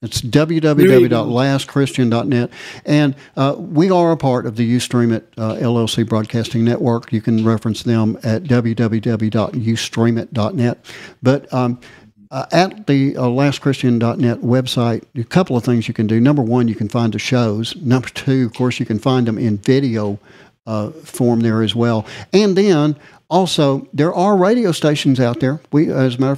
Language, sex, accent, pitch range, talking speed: English, male, American, 115-135 Hz, 165 wpm